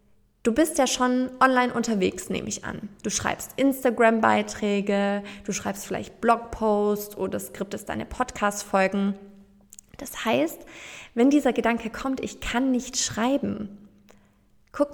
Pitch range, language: 200-240 Hz, German